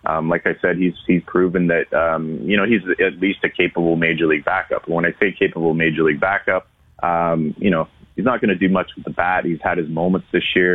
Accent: American